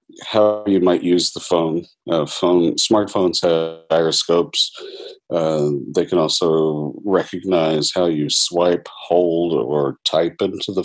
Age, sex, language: 40-59, male, English